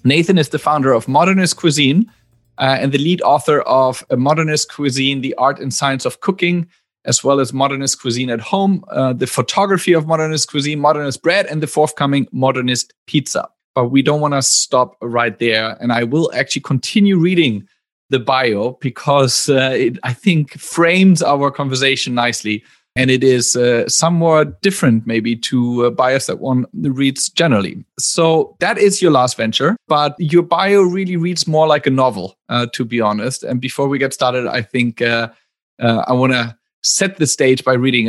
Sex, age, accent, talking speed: male, 30-49, German, 185 wpm